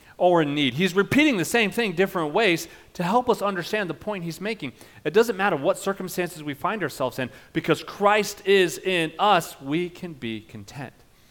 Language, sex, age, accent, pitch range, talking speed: English, male, 30-49, American, 135-195 Hz, 190 wpm